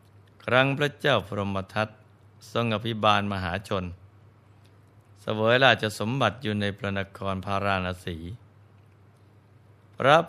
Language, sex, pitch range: Thai, male, 100-110 Hz